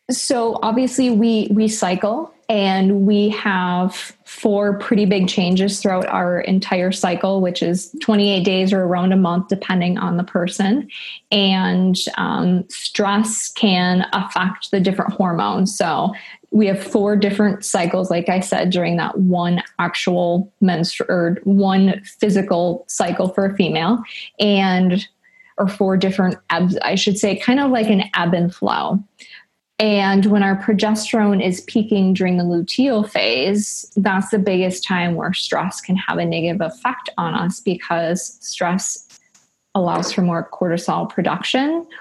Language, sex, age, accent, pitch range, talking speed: English, female, 20-39, American, 185-210 Hz, 145 wpm